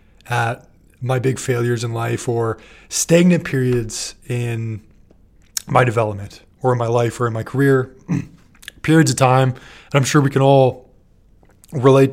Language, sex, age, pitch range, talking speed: English, male, 20-39, 115-135 Hz, 150 wpm